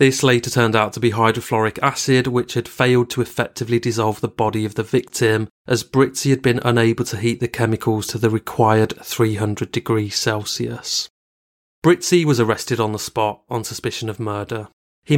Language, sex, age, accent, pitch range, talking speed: English, male, 30-49, British, 110-125 Hz, 180 wpm